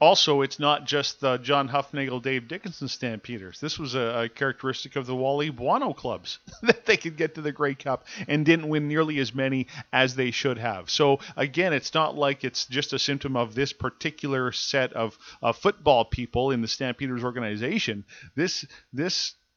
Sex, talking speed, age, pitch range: male, 185 wpm, 40-59, 120-145 Hz